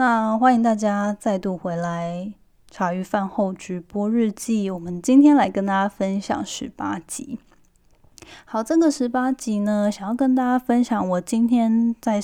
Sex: female